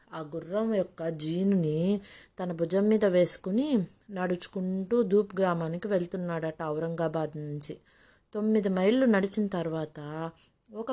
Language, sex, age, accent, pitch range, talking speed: Telugu, female, 20-39, native, 170-215 Hz, 105 wpm